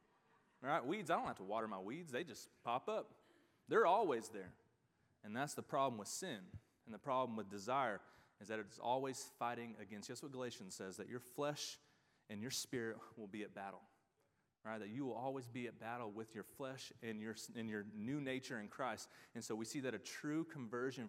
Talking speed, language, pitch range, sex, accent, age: 210 wpm, English, 115-155 Hz, male, American, 30-49